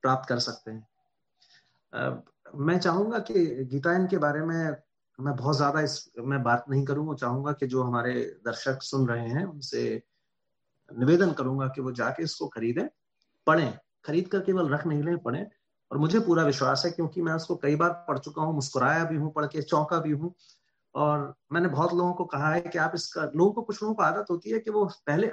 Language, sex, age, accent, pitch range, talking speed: English, male, 30-49, Indian, 130-170 Hz, 170 wpm